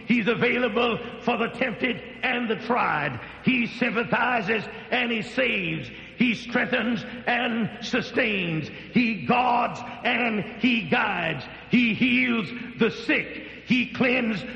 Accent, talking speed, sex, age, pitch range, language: American, 115 wpm, male, 60-79, 210-245 Hz, English